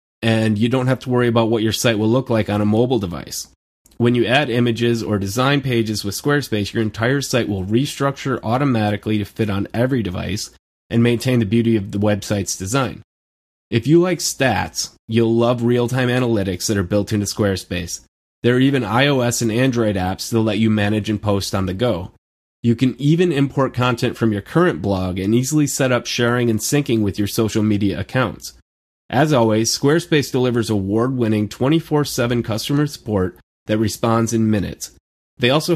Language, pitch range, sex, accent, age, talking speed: English, 100-130 Hz, male, American, 30-49, 185 wpm